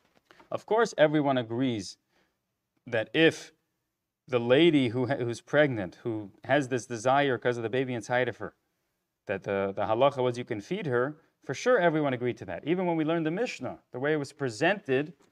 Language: English